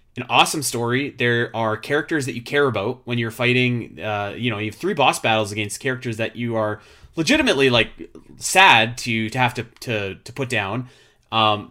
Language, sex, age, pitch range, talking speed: English, male, 30-49, 110-140 Hz, 195 wpm